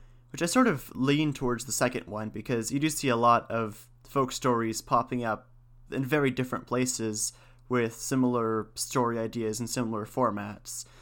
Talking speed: 170 wpm